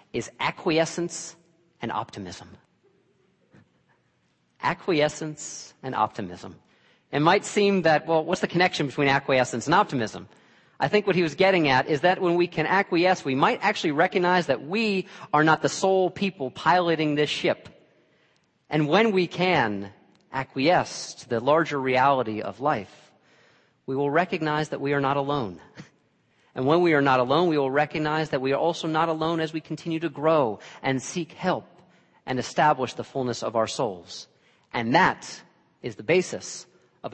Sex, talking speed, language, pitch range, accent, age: male, 165 wpm, English, 130-170 Hz, American, 40-59